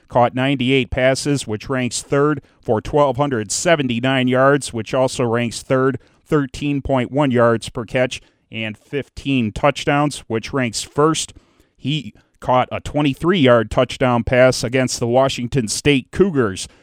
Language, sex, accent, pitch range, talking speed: English, male, American, 115-135 Hz, 120 wpm